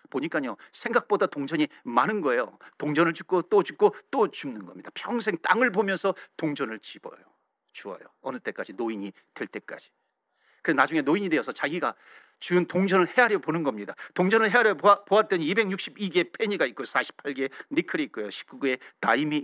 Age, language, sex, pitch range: 50-69, Korean, male, 170-235 Hz